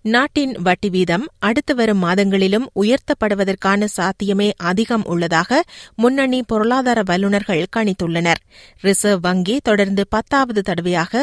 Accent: native